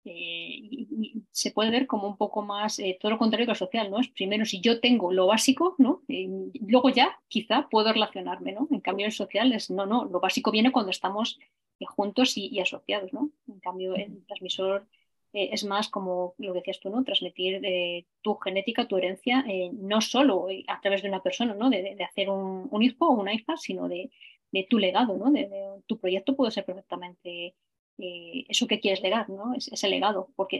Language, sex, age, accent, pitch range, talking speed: Spanish, female, 20-39, Spanish, 190-250 Hz, 220 wpm